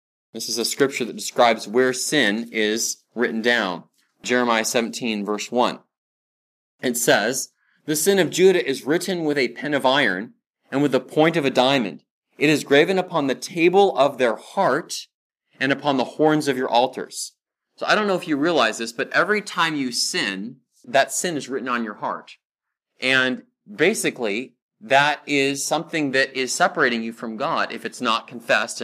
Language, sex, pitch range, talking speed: English, male, 120-155 Hz, 180 wpm